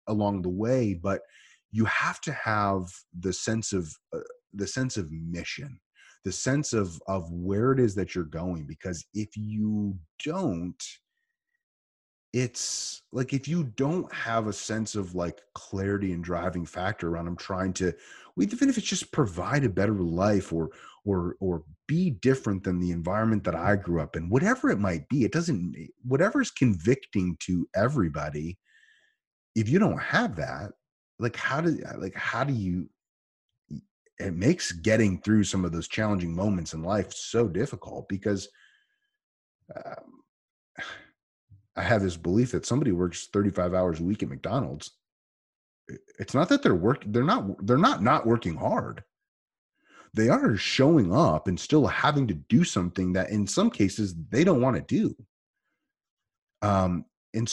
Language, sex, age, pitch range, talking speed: English, male, 30-49, 90-120 Hz, 160 wpm